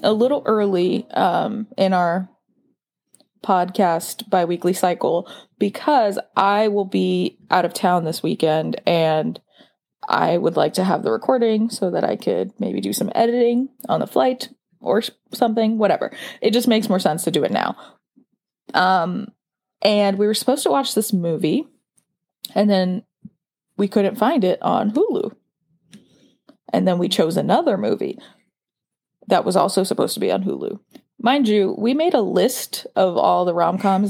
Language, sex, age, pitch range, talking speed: English, female, 20-39, 180-240 Hz, 160 wpm